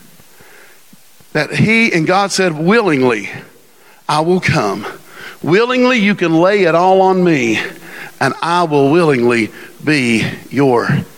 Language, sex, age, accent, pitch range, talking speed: English, male, 50-69, American, 135-200 Hz, 125 wpm